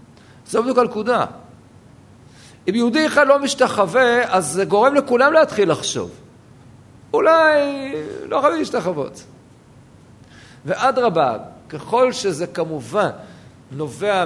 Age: 50-69